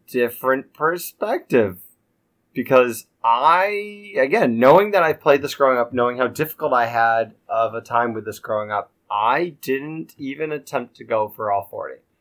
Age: 20-39